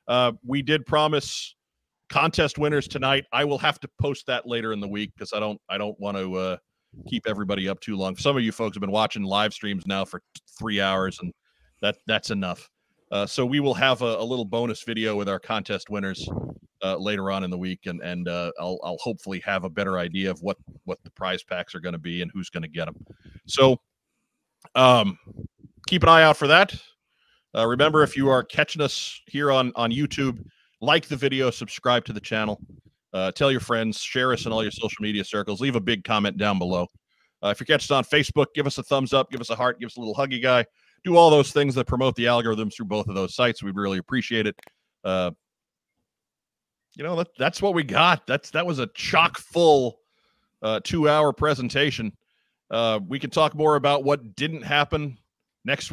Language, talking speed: English, 220 wpm